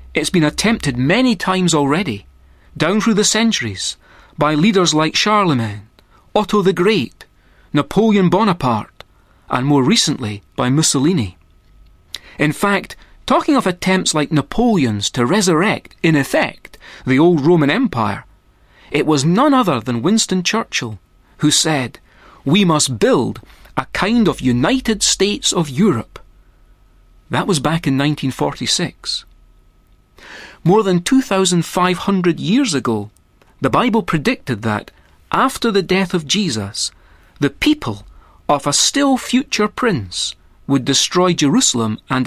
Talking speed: 125 wpm